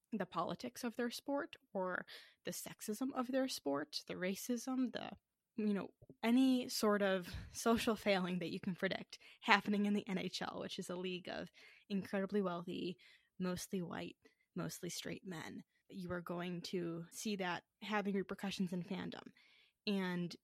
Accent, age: American, 10-29